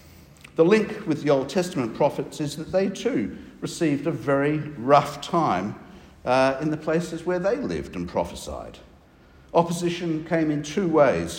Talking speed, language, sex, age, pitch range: 160 wpm, English, male, 60-79, 130-170 Hz